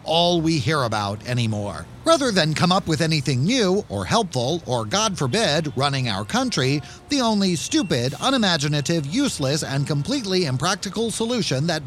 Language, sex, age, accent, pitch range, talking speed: English, male, 40-59, American, 145-225 Hz, 150 wpm